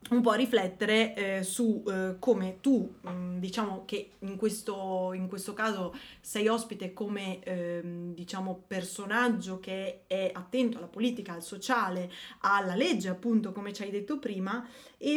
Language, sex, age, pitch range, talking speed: Italian, female, 20-39, 190-235 Hz, 155 wpm